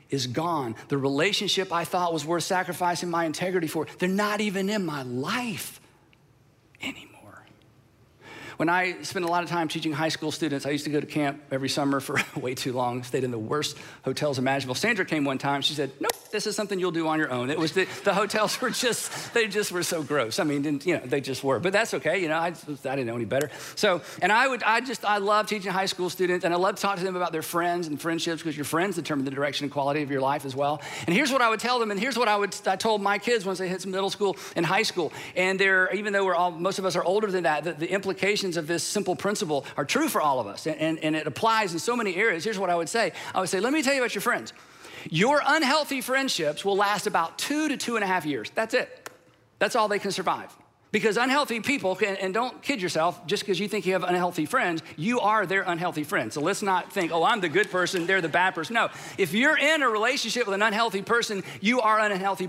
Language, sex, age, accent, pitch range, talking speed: English, male, 40-59, American, 155-210 Hz, 260 wpm